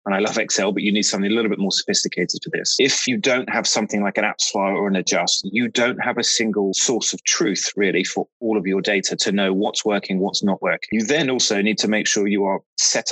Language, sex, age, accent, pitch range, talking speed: English, male, 20-39, British, 95-110 Hz, 265 wpm